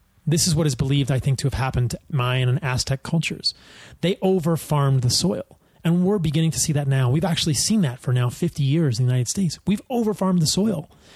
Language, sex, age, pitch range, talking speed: English, male, 30-49, 130-170 Hz, 225 wpm